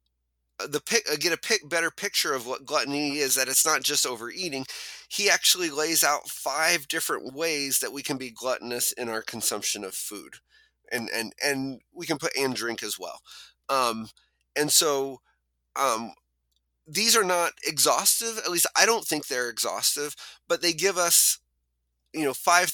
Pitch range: 130-185 Hz